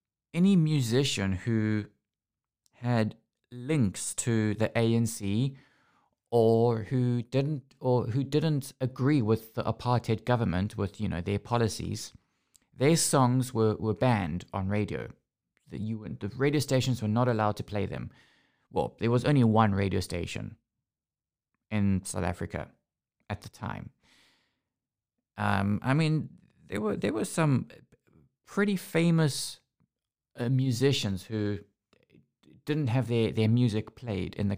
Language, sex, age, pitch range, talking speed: English, male, 20-39, 105-135 Hz, 130 wpm